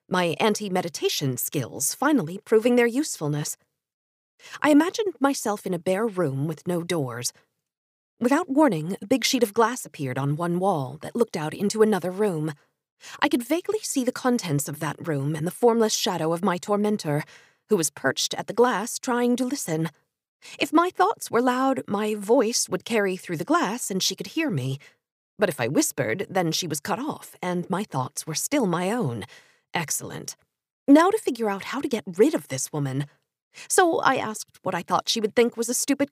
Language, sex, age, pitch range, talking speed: English, female, 40-59, 170-250 Hz, 195 wpm